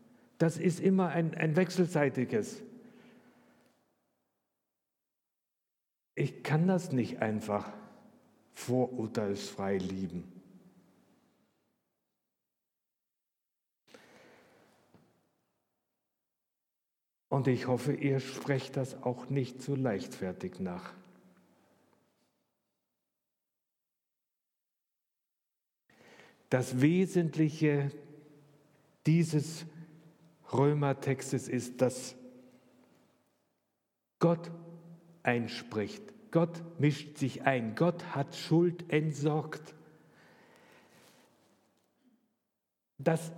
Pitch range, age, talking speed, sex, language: 135-175 Hz, 60-79, 55 wpm, male, German